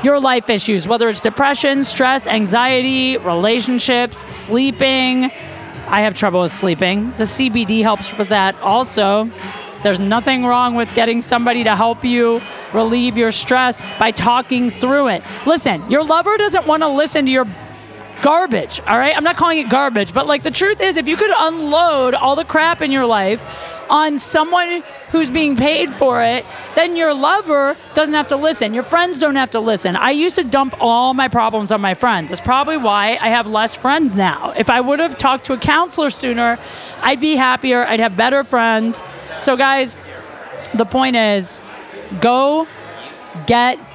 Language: English